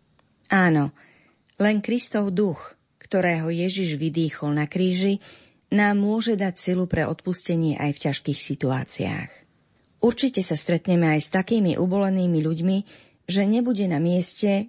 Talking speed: 125 wpm